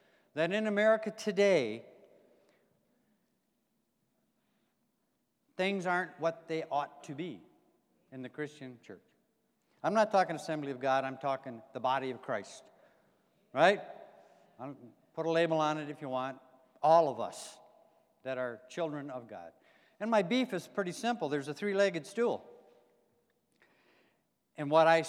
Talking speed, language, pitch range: 135 wpm, English, 135-170 Hz